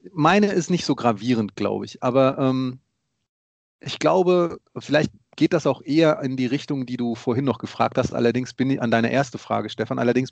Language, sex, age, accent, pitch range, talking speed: German, male, 30-49, German, 120-150 Hz, 200 wpm